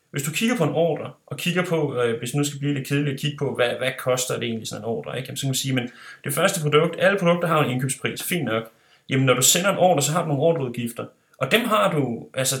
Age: 30-49